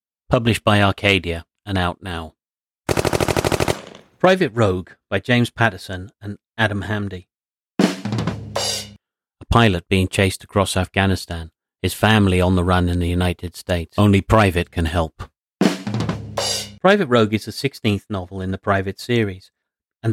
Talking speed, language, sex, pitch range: 130 wpm, English, male, 95-110 Hz